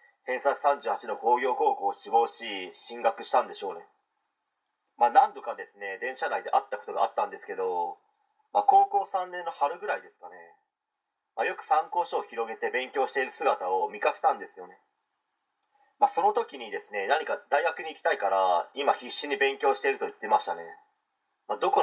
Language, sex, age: Japanese, male, 30-49